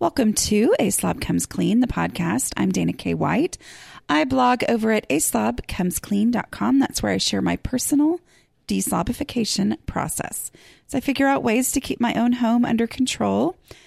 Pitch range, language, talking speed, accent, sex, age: 200-270 Hz, English, 160 wpm, American, female, 30-49